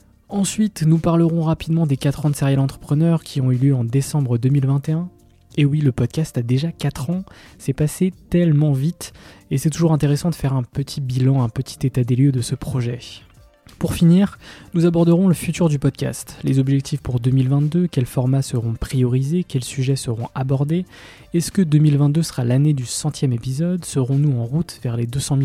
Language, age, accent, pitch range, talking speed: French, 20-39, French, 130-160 Hz, 190 wpm